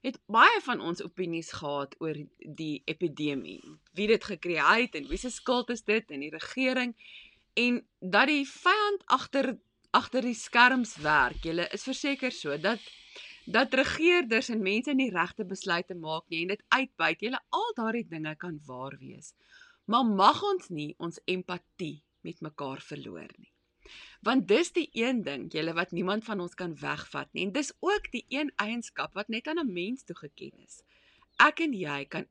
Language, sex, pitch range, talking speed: English, female, 170-270 Hz, 175 wpm